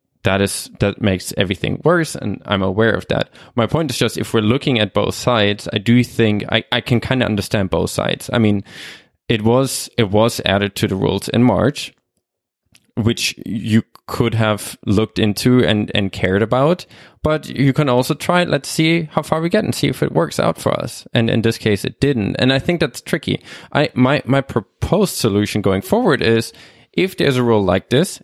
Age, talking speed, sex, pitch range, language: 20-39, 210 wpm, male, 105-130 Hz, English